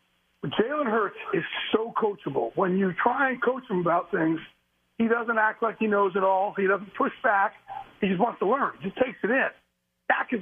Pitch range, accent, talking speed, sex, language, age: 190-245 Hz, American, 220 wpm, male, English, 50-69